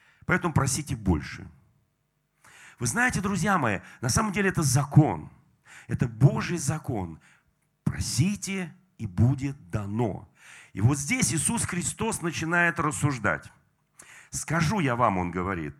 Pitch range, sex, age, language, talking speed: 125-180 Hz, male, 40-59, Russian, 120 wpm